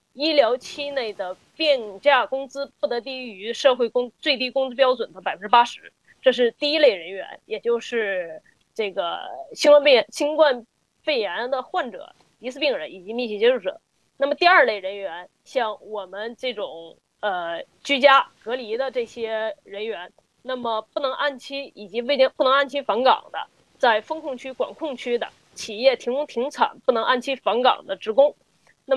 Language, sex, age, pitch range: Chinese, female, 20-39, 235-295 Hz